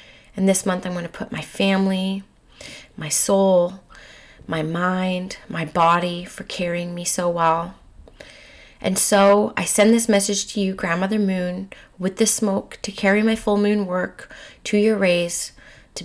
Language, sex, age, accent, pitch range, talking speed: English, female, 30-49, American, 165-195 Hz, 160 wpm